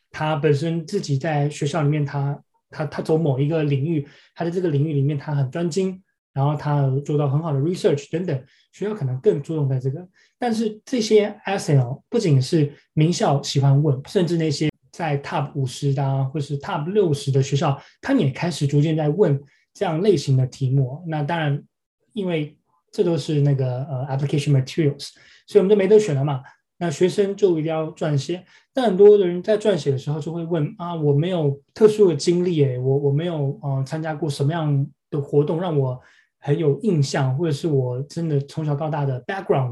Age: 20-39